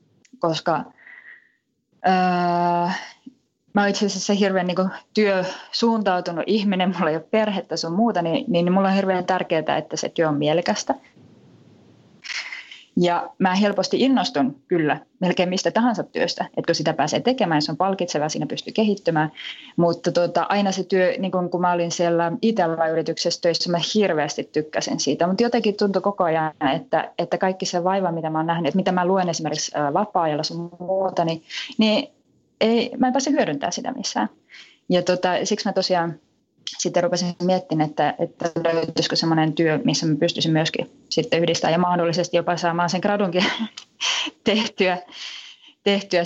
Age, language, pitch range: 20-39, Finnish, 170-210 Hz